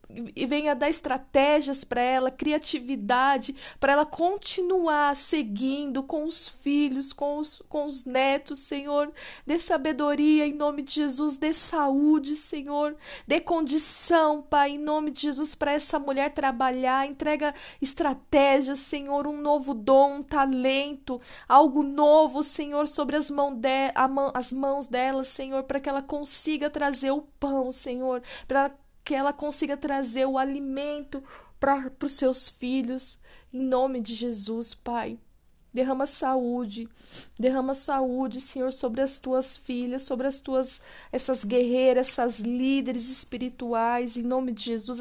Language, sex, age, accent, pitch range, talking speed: Portuguese, female, 20-39, Brazilian, 260-295 Hz, 140 wpm